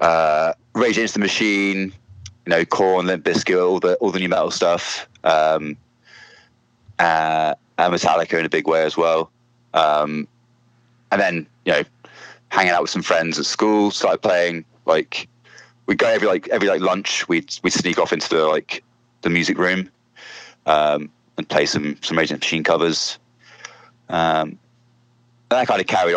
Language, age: English, 20-39